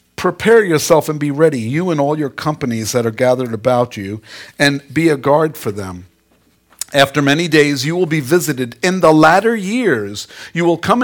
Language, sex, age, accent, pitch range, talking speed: English, male, 50-69, American, 130-185 Hz, 190 wpm